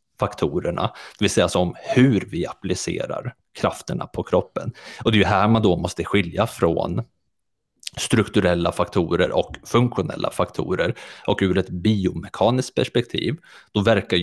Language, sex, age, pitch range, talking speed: Swedish, male, 30-49, 90-110 Hz, 140 wpm